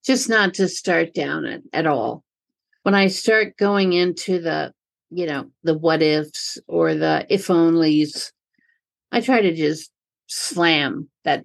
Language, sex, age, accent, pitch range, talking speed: English, female, 50-69, American, 175-235 Hz, 150 wpm